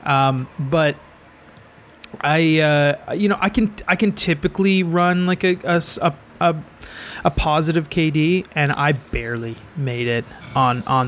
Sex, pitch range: male, 130-160 Hz